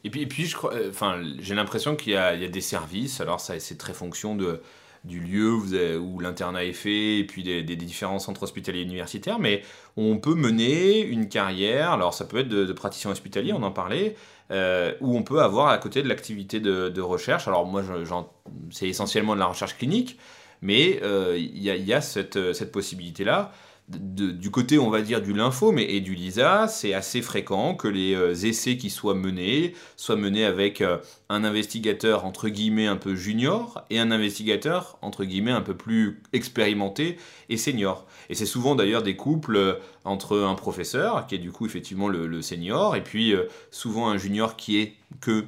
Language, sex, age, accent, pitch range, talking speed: French, male, 30-49, French, 95-120 Hz, 200 wpm